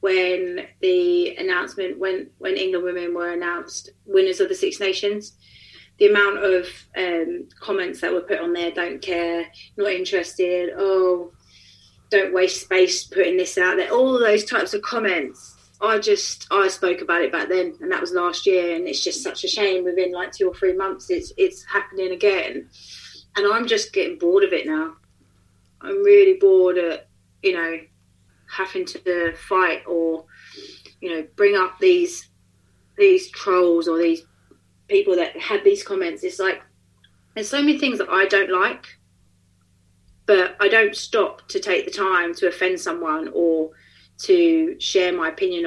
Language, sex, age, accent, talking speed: English, female, 30-49, British, 170 wpm